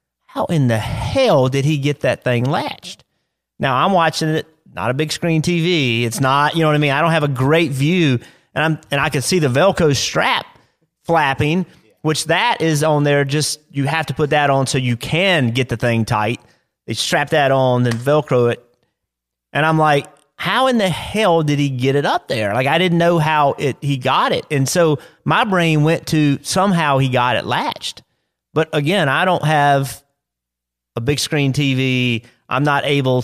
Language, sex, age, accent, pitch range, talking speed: English, male, 30-49, American, 125-155 Hz, 205 wpm